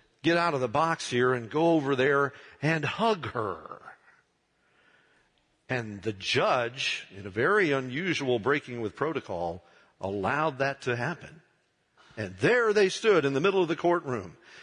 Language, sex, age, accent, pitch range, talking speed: English, male, 50-69, American, 130-195 Hz, 150 wpm